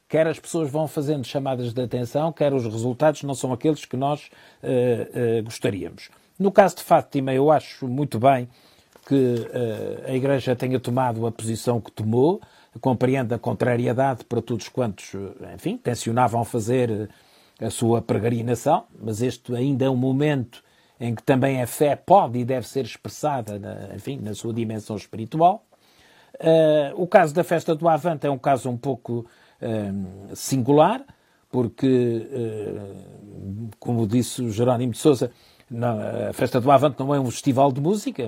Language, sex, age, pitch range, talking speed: Portuguese, male, 50-69, 115-140 Hz, 160 wpm